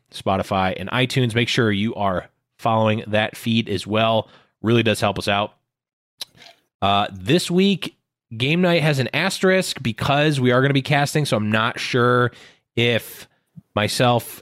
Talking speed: 160 wpm